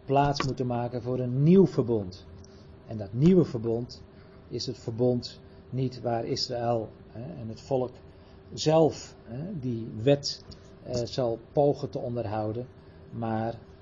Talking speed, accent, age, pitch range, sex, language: 135 wpm, Dutch, 40-59, 105-125 Hz, male, Dutch